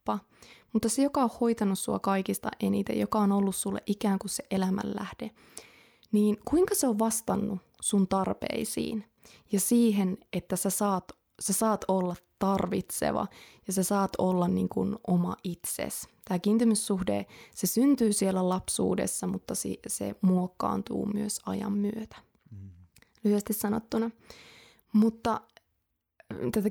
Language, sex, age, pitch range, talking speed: Finnish, female, 20-39, 190-225 Hz, 130 wpm